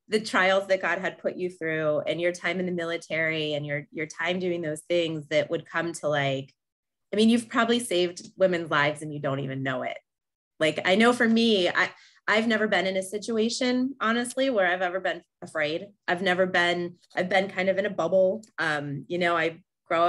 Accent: American